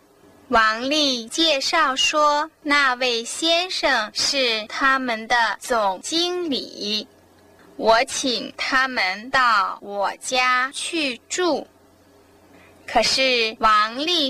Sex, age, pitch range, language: female, 10-29, 230-320 Hz, Chinese